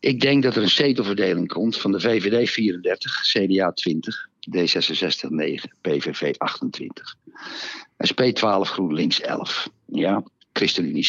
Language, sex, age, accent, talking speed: Dutch, male, 60-79, Dutch, 120 wpm